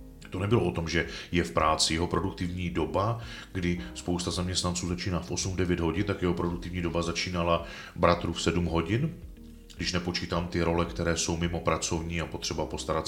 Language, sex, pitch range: Czech, male, 85-100 Hz